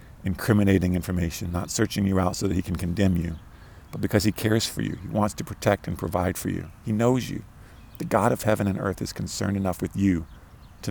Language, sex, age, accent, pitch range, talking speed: English, male, 40-59, American, 90-105 Hz, 225 wpm